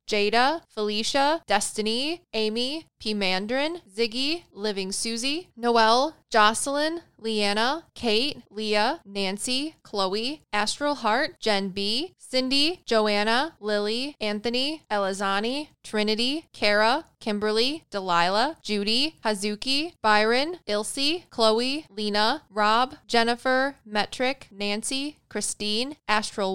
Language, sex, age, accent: English, female, 10-29, American